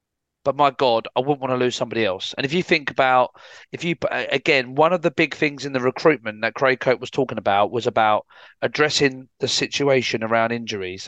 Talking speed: 210 wpm